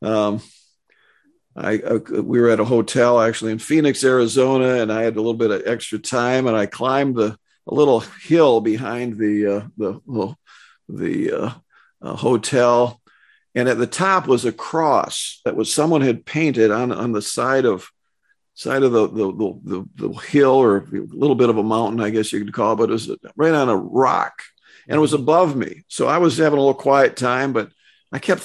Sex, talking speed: male, 205 wpm